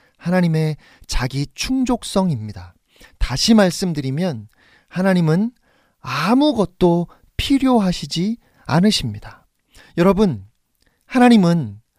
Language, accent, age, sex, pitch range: Korean, native, 40-59, male, 130-215 Hz